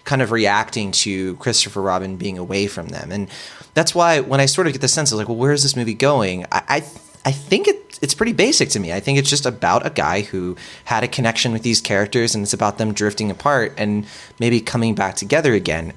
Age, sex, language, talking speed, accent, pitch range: 20-39, male, English, 245 wpm, American, 105-135 Hz